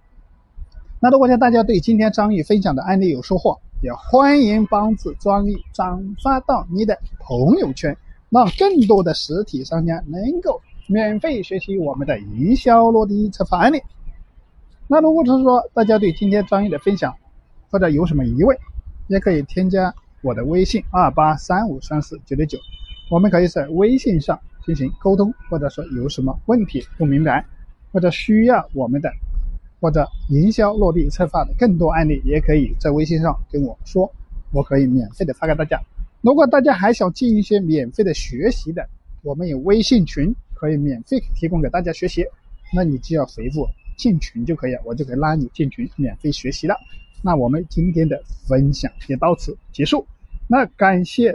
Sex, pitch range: male, 145-215 Hz